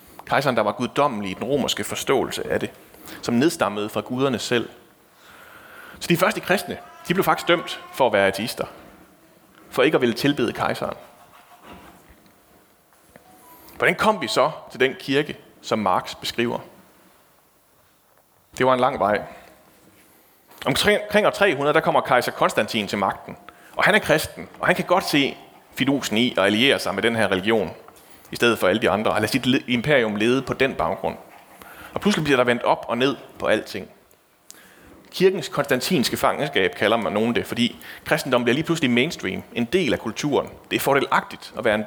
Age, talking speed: 30-49, 175 wpm